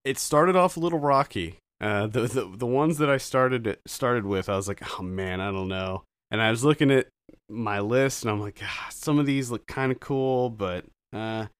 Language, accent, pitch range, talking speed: English, American, 100-125 Hz, 230 wpm